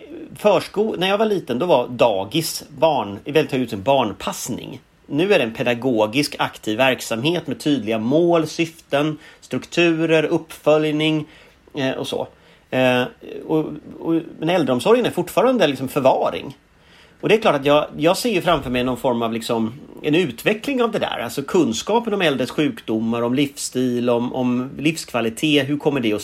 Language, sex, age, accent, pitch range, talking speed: English, male, 40-59, Swedish, 120-165 Hz, 160 wpm